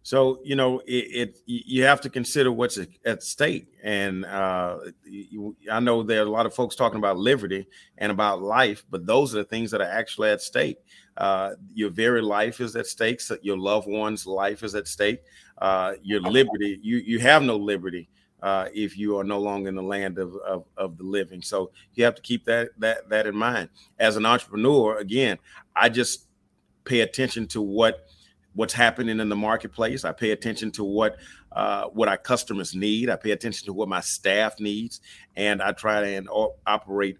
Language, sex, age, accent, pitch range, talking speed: English, male, 40-59, American, 100-115 Hz, 200 wpm